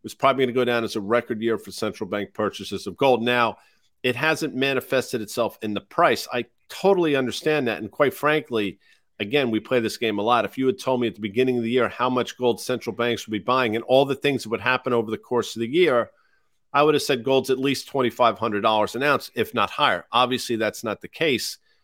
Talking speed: 240 wpm